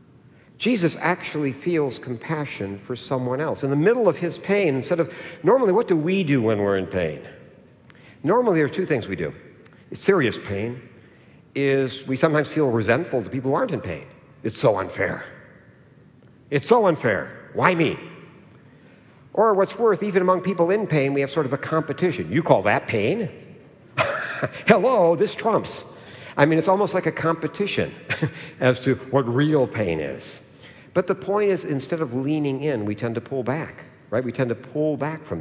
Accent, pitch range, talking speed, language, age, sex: American, 125-170 Hz, 180 wpm, English, 60-79, male